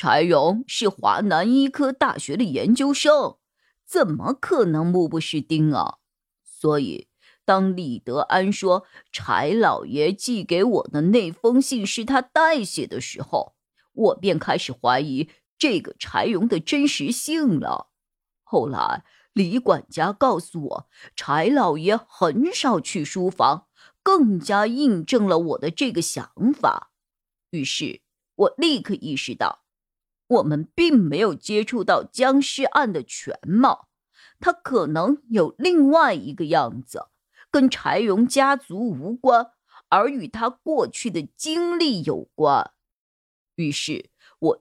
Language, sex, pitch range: Chinese, female, 185-280 Hz